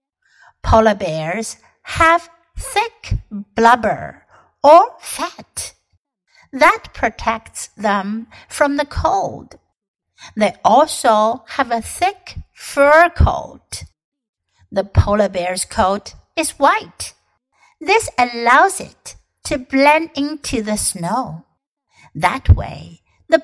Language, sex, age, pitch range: Chinese, female, 60-79, 210-320 Hz